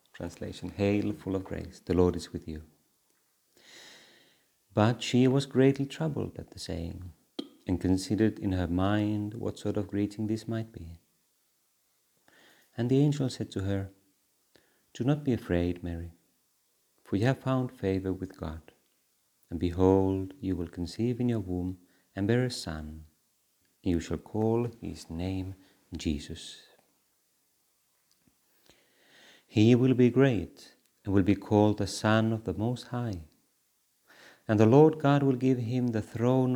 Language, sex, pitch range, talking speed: Finnish, male, 90-115 Hz, 145 wpm